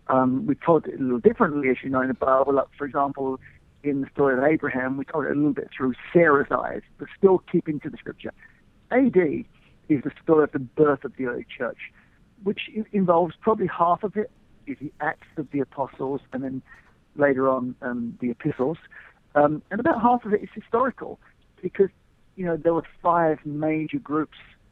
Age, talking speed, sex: 50-69, 200 wpm, male